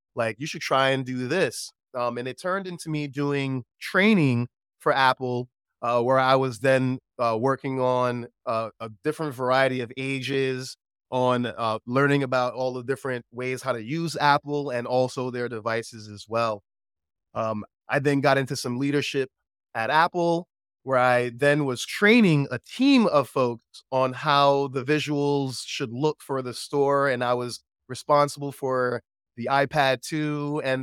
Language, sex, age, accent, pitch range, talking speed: English, male, 30-49, American, 125-150 Hz, 165 wpm